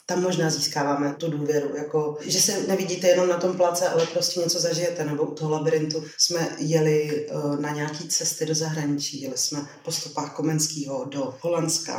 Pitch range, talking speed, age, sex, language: 150-170 Hz, 180 wpm, 30-49, female, Czech